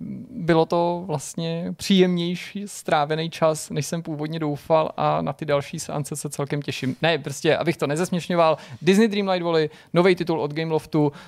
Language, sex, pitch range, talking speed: Czech, male, 145-160 Hz, 160 wpm